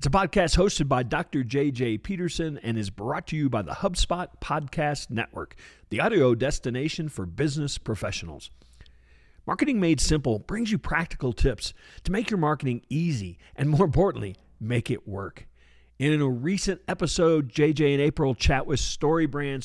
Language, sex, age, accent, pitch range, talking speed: English, male, 50-69, American, 120-170 Hz, 160 wpm